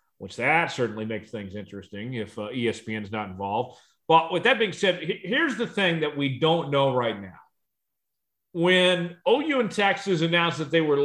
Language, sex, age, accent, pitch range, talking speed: English, male, 40-59, American, 130-180 Hz, 180 wpm